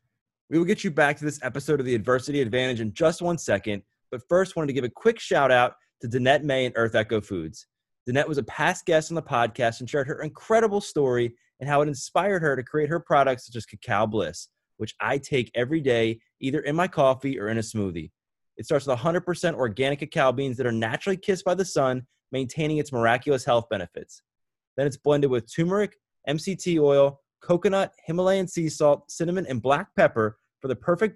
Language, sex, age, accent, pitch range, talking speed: English, male, 20-39, American, 125-160 Hz, 210 wpm